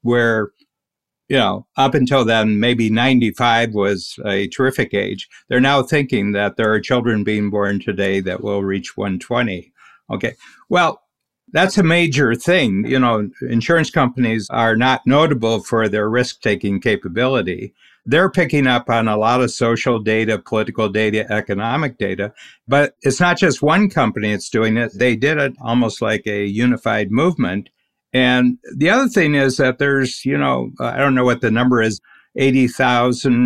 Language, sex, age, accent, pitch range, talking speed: English, male, 60-79, American, 105-130 Hz, 160 wpm